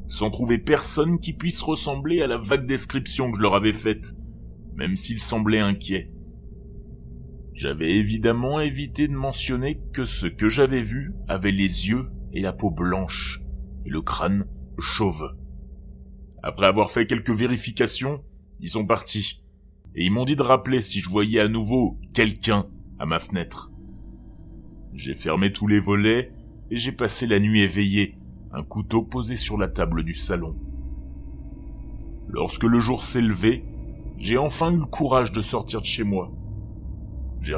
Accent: French